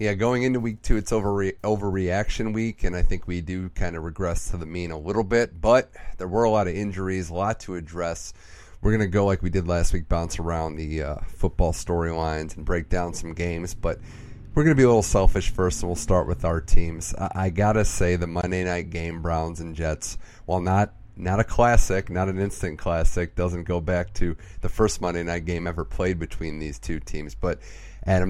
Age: 30-49